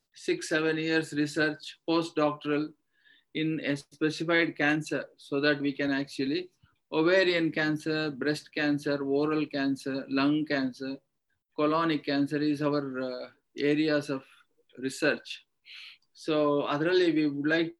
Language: Kannada